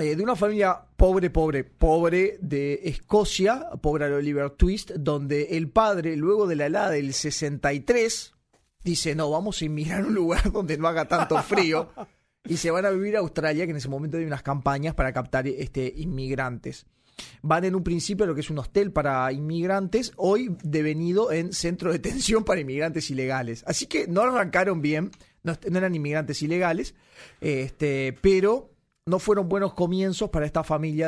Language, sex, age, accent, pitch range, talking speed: Spanish, male, 30-49, Argentinian, 140-190 Hz, 170 wpm